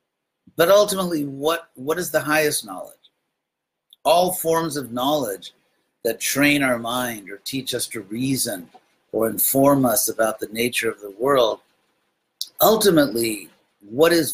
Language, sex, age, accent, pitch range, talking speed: English, male, 50-69, American, 120-160 Hz, 140 wpm